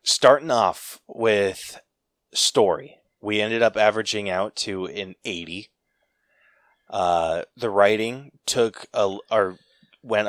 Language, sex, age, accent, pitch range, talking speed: English, male, 20-39, American, 95-115 Hz, 110 wpm